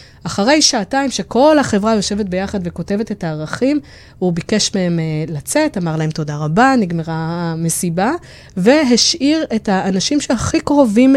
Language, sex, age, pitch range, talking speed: Hebrew, female, 20-39, 180-250 Hz, 135 wpm